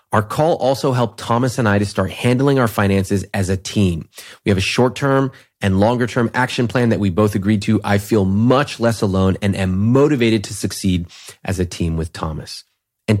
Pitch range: 100-125 Hz